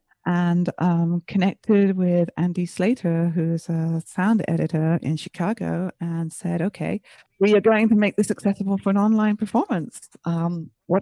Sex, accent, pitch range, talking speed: female, British, 160-190 Hz, 150 wpm